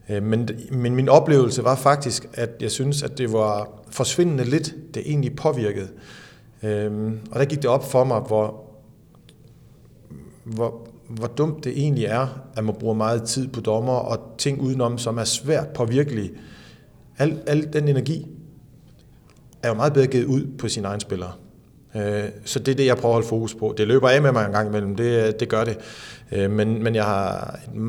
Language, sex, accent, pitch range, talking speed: Danish, male, native, 110-140 Hz, 185 wpm